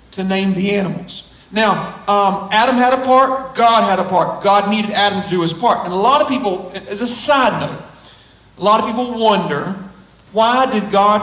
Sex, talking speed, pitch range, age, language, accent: male, 205 wpm, 190-230 Hz, 40-59, English, American